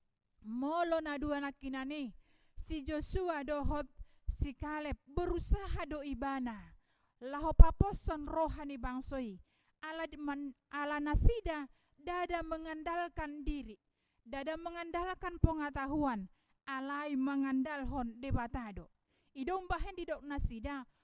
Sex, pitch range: female, 260-325 Hz